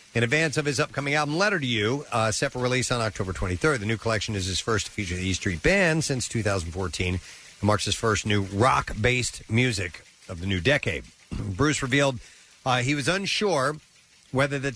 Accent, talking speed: American, 200 wpm